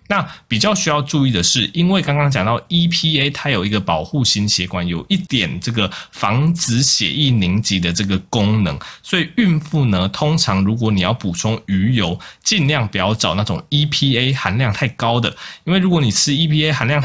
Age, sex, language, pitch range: 20-39, male, Chinese, 95-145 Hz